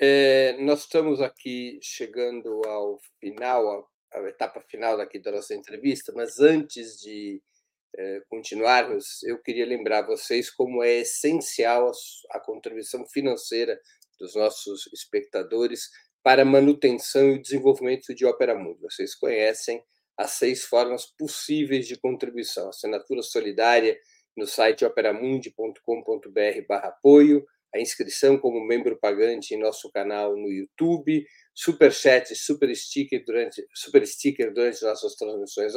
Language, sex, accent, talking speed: Portuguese, male, Brazilian, 125 wpm